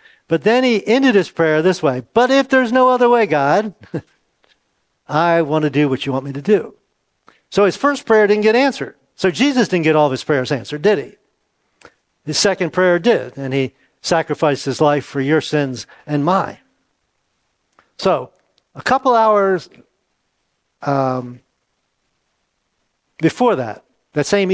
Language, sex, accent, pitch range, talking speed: English, male, American, 150-200 Hz, 160 wpm